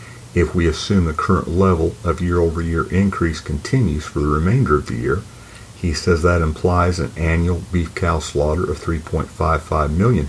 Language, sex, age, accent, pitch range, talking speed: English, male, 50-69, American, 75-95 Hz, 165 wpm